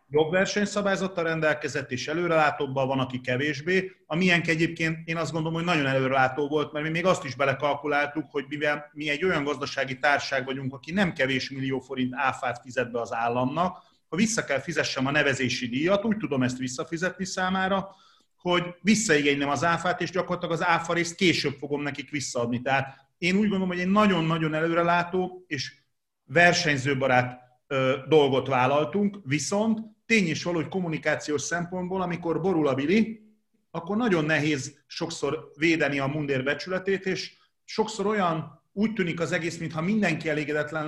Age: 40-59